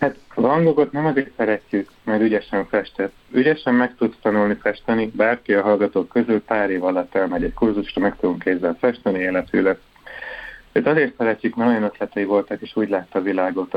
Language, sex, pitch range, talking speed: Hungarian, male, 95-115 Hz, 175 wpm